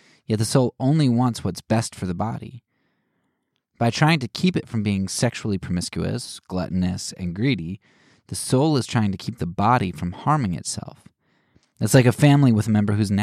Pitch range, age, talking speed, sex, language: 95-125 Hz, 20-39, 190 wpm, male, English